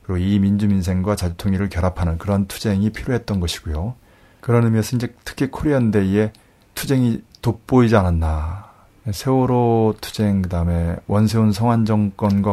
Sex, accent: male, native